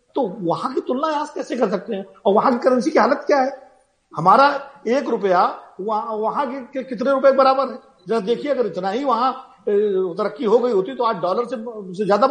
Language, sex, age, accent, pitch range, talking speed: Hindi, male, 50-69, native, 185-270 Hz, 155 wpm